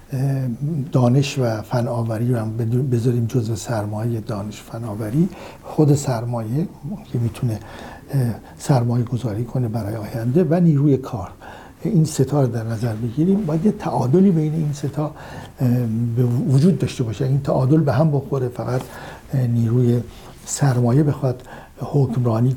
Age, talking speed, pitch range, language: 60-79, 135 wpm, 120-140 Hz, Persian